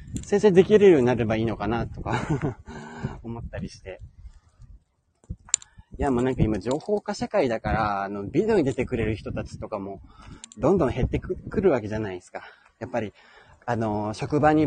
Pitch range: 110-160 Hz